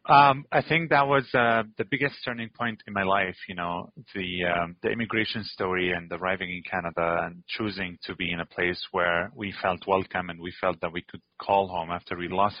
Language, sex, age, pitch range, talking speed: English, male, 30-49, 95-115 Hz, 220 wpm